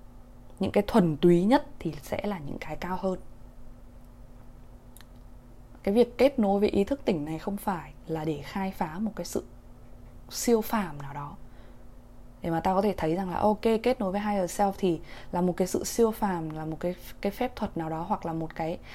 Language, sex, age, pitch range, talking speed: Vietnamese, female, 20-39, 125-200 Hz, 215 wpm